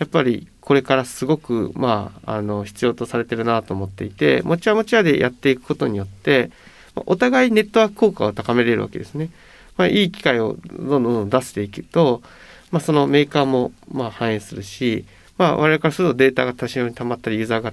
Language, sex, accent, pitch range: Japanese, male, native, 115-175 Hz